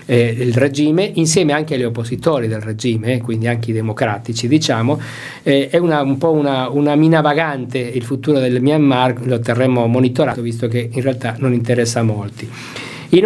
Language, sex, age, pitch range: Italian, male, 50-69, 125-160 Hz